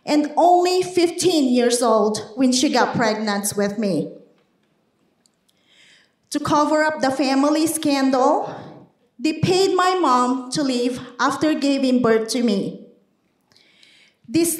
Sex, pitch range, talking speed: female, 250-330 Hz, 120 wpm